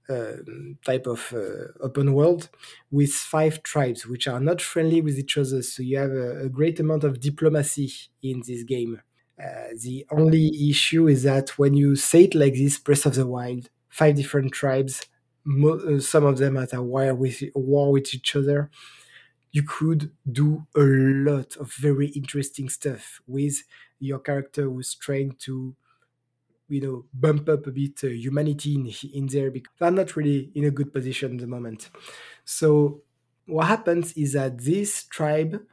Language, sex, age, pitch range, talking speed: English, male, 20-39, 135-155 Hz, 170 wpm